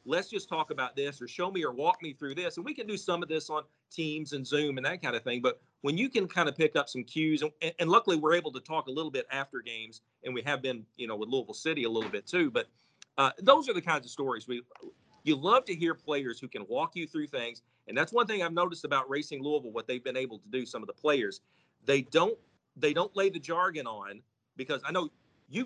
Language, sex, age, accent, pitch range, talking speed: English, male, 40-59, American, 135-175 Hz, 270 wpm